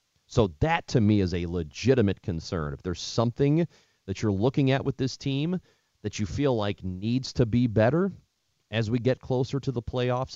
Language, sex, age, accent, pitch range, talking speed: English, male, 40-59, American, 95-120 Hz, 190 wpm